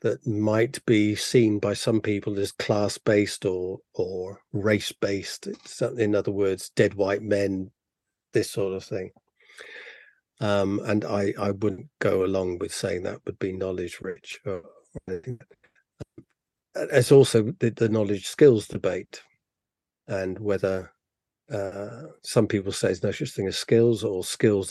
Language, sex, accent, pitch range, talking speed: English, male, British, 95-120 Hz, 140 wpm